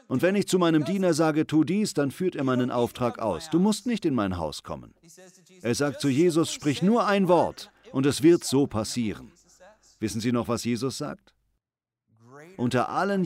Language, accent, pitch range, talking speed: German, German, 120-165 Hz, 195 wpm